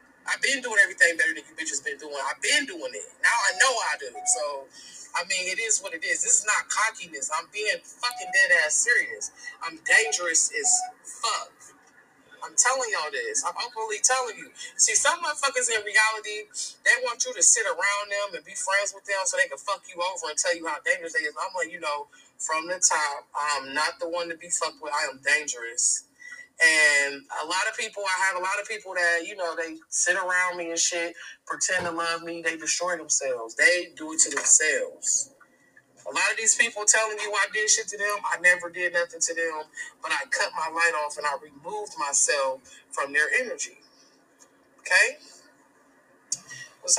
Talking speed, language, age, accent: 210 wpm, English, 20-39, American